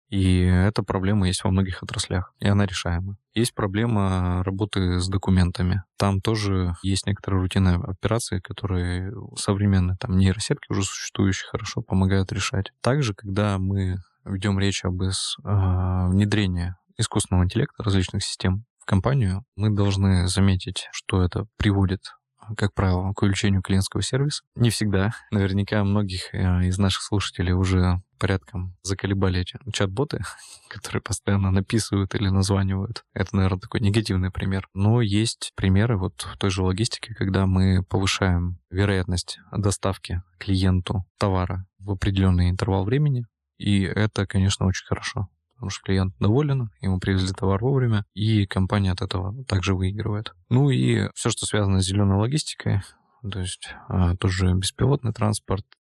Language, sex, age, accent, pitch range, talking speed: Russian, male, 20-39, native, 95-105 Hz, 135 wpm